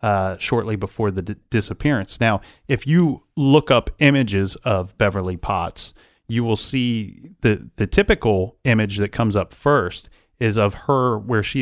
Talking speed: 160 wpm